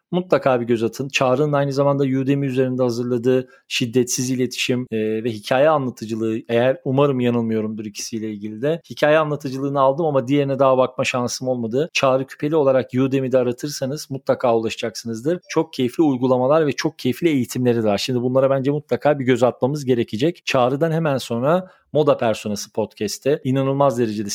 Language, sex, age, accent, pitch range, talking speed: Turkish, male, 40-59, native, 115-140 Hz, 150 wpm